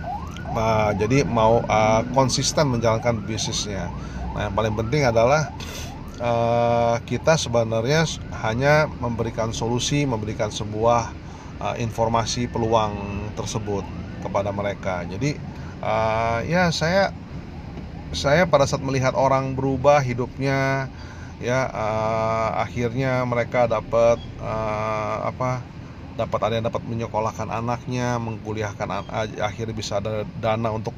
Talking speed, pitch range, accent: 110 wpm, 110-130 Hz, native